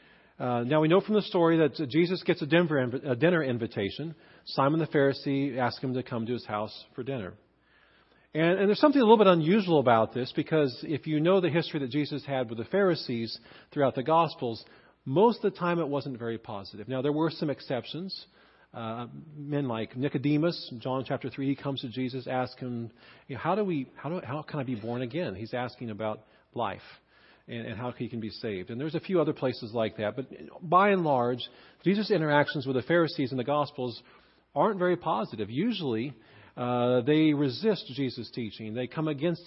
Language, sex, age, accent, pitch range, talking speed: English, male, 40-59, American, 120-165 Hz, 205 wpm